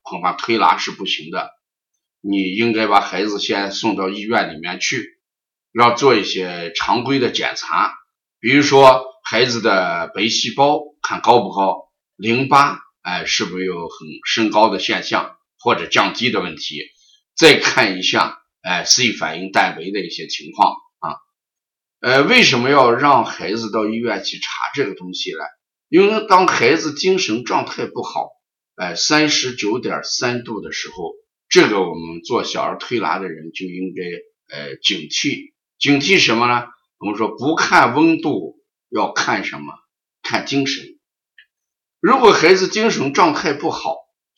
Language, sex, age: Chinese, male, 50-69